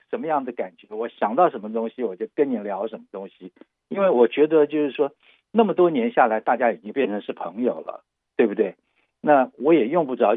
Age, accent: 50-69, native